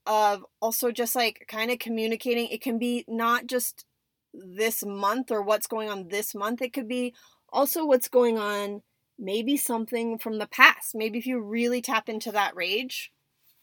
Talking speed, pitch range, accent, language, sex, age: 175 wpm, 215-265 Hz, American, English, female, 30-49